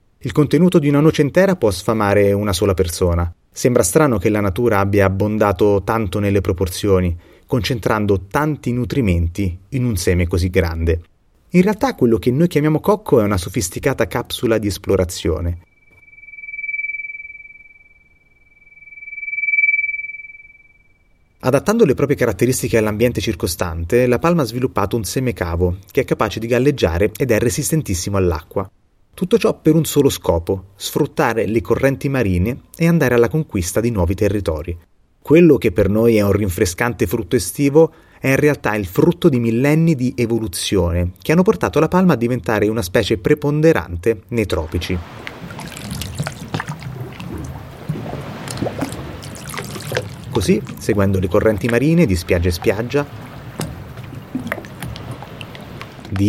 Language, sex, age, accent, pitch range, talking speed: Italian, male, 30-49, native, 100-150 Hz, 130 wpm